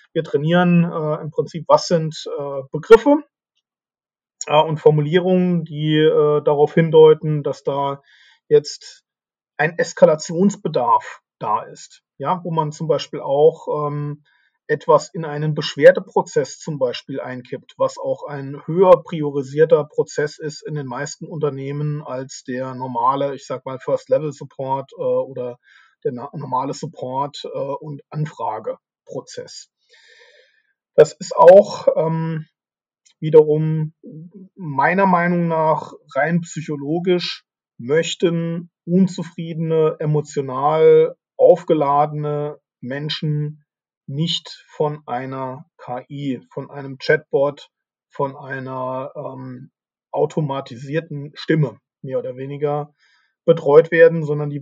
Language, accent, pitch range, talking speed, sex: German, German, 145-180 Hz, 110 wpm, male